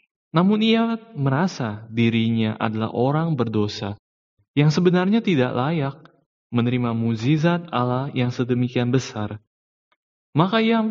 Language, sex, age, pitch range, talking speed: Indonesian, male, 20-39, 105-145 Hz, 105 wpm